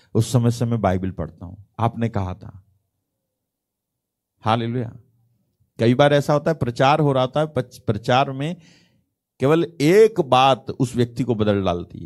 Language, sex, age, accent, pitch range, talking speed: Hindi, male, 50-69, native, 100-125 Hz, 160 wpm